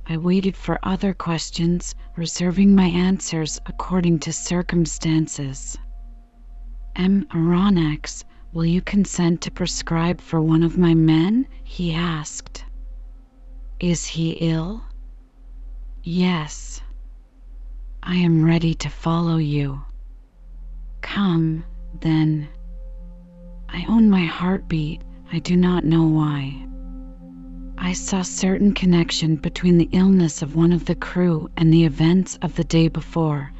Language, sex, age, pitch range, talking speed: English, female, 40-59, 160-180 Hz, 120 wpm